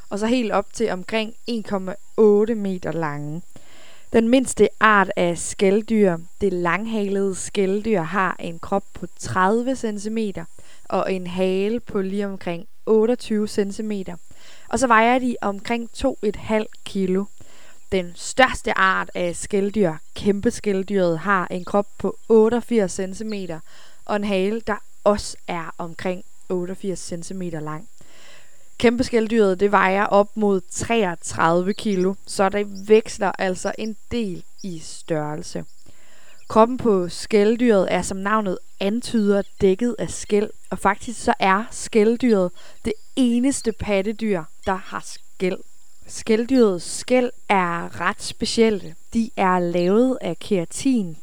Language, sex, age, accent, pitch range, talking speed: Danish, female, 20-39, native, 185-220 Hz, 125 wpm